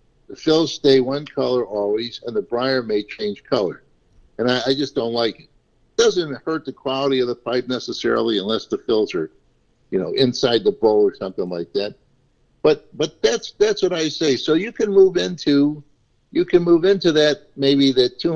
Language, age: English, 60-79